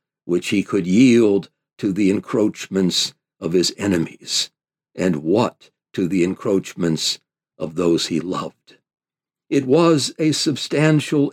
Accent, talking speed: American, 120 wpm